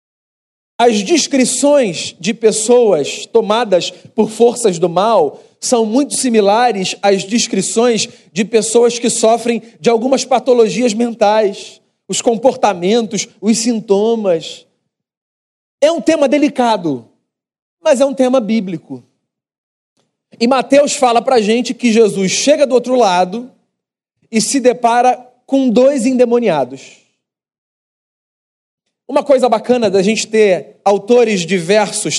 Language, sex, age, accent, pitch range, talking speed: Portuguese, male, 40-59, Brazilian, 205-245 Hz, 110 wpm